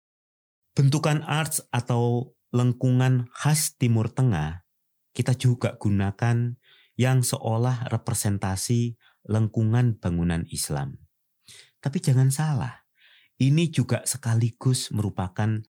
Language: Indonesian